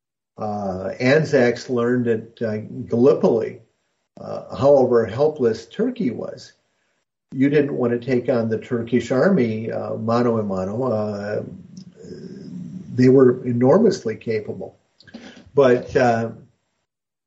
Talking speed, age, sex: 110 wpm, 50-69, male